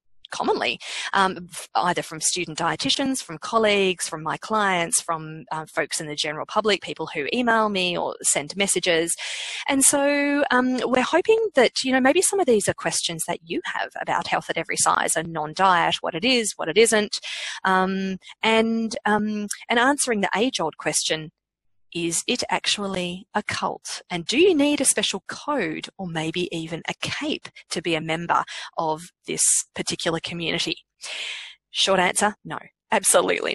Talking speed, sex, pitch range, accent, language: 165 wpm, female, 170-225 Hz, Australian, English